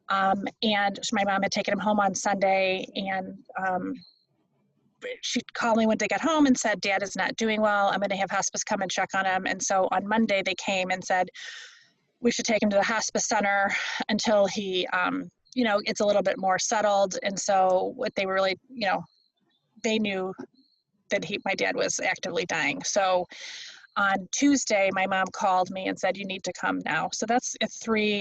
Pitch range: 190-225 Hz